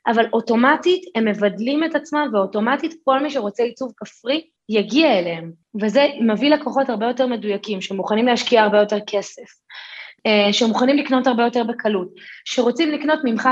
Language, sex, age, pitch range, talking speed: Hebrew, female, 20-39, 205-260 Hz, 145 wpm